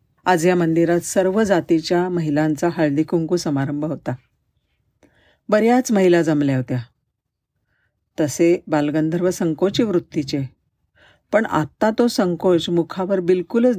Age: 50-69